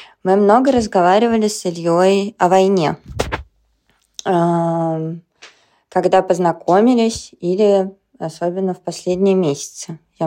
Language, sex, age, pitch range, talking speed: Russian, female, 20-39, 170-195 Hz, 90 wpm